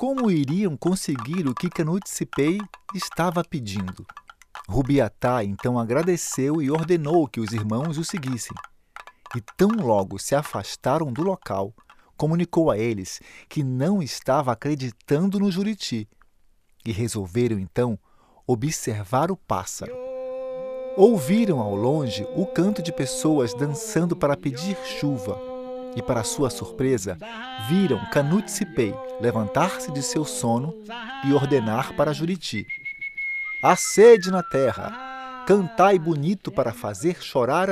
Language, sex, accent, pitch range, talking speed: Portuguese, male, Brazilian, 120-195 Hz, 120 wpm